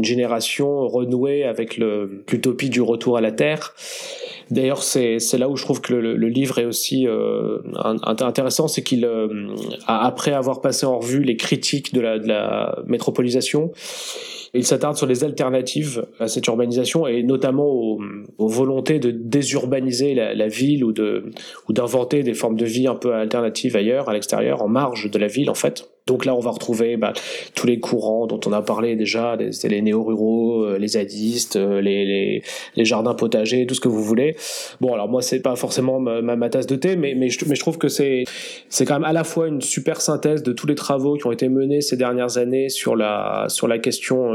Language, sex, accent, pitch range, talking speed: French, male, French, 115-145 Hz, 195 wpm